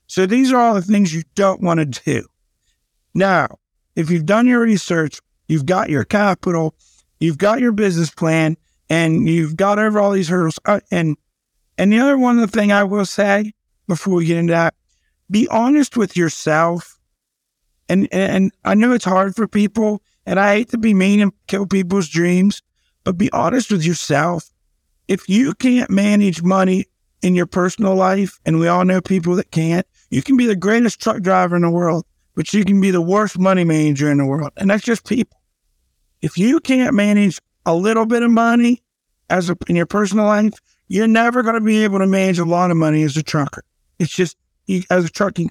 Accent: American